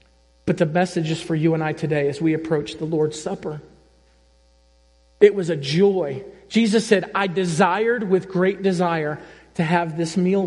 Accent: American